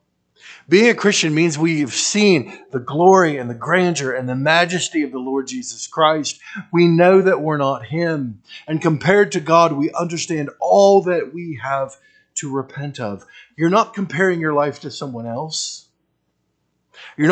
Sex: male